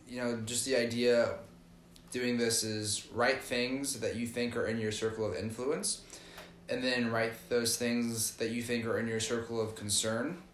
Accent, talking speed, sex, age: American, 195 wpm, male, 10-29